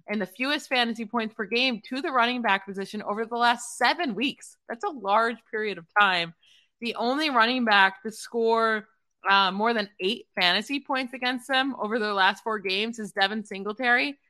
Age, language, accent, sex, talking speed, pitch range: 20-39, English, American, female, 190 wpm, 200-255 Hz